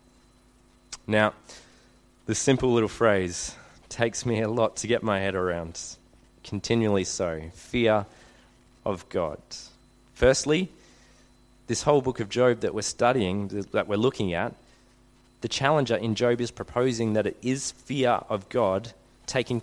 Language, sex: English, male